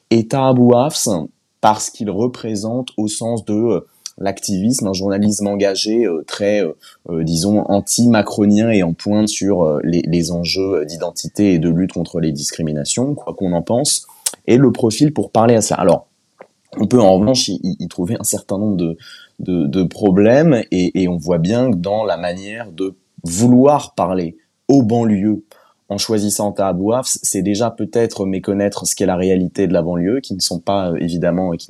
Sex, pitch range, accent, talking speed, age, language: male, 85-105 Hz, French, 180 wpm, 20-39, French